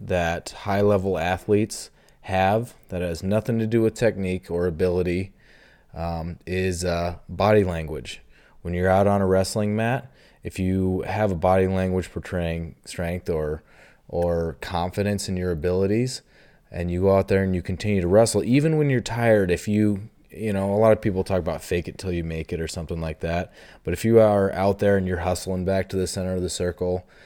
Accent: American